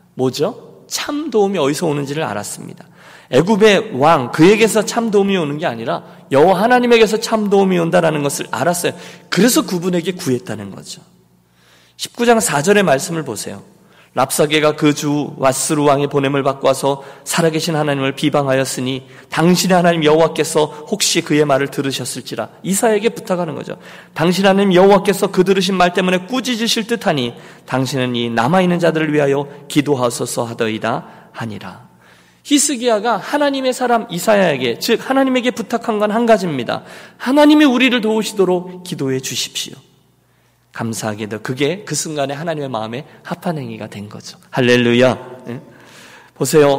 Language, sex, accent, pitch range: Korean, male, native, 135-185 Hz